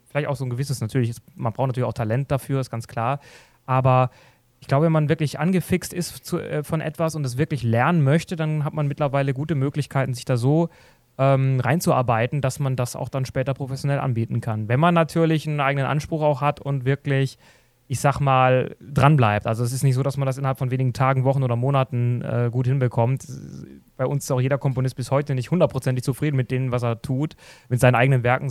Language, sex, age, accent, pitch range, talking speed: German, male, 30-49, German, 120-140 Hz, 215 wpm